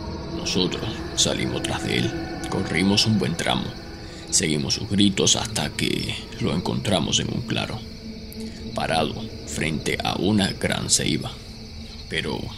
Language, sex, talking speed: Spanish, male, 125 wpm